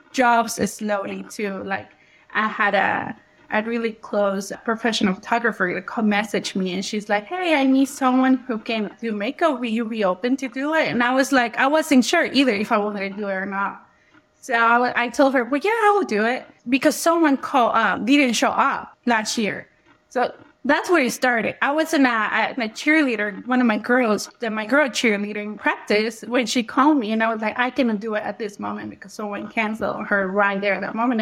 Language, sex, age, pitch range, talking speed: English, female, 20-39, 215-280 Hz, 220 wpm